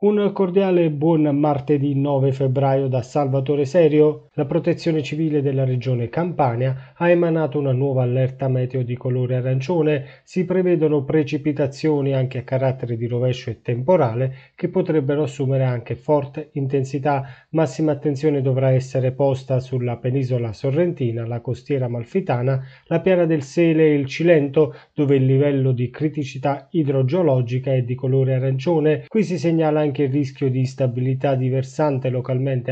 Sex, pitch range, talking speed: male, 130-155 Hz, 145 wpm